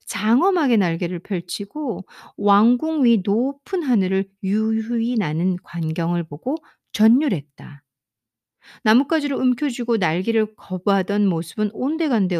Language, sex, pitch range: Korean, female, 180-280 Hz